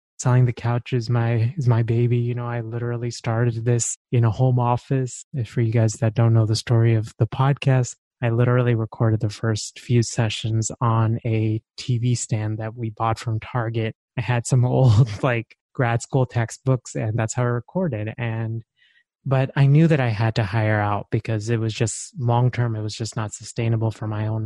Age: 20-39